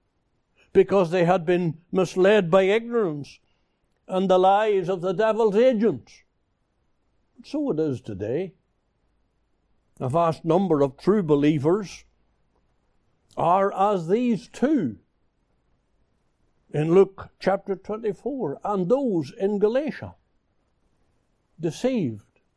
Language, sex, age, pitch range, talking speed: English, male, 60-79, 115-190 Hz, 100 wpm